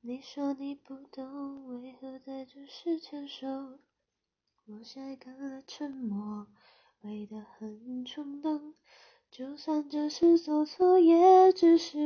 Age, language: 20-39, Chinese